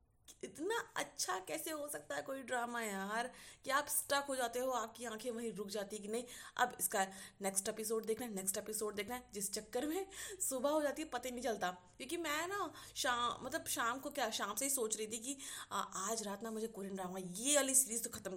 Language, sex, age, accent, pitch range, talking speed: Hindi, female, 20-39, native, 210-270 Hz, 230 wpm